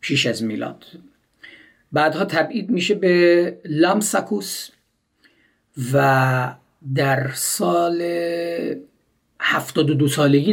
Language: Persian